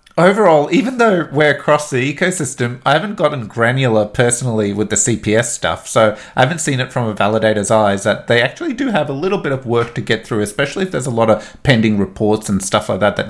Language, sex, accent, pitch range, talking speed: English, male, Australian, 110-140 Hz, 230 wpm